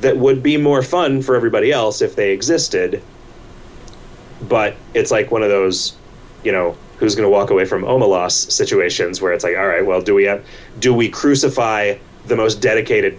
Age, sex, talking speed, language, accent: 30-49, male, 190 wpm, English, American